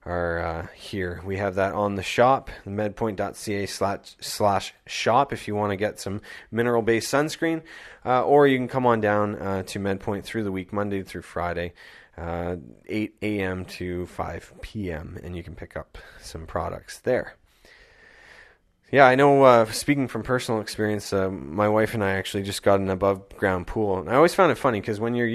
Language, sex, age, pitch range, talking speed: English, male, 20-39, 95-115 Hz, 185 wpm